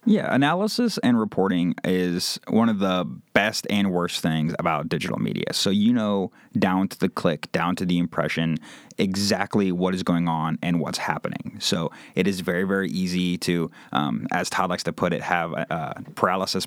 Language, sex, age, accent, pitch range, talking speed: English, male, 30-49, American, 85-100 Hz, 185 wpm